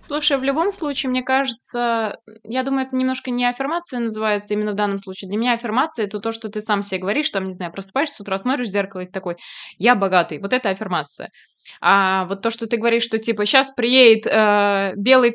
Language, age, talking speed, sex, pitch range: Russian, 20-39, 205 wpm, female, 195-240 Hz